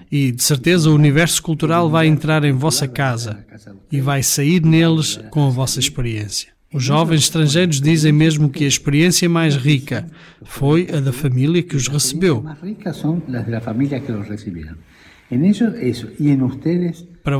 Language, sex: Portuguese, male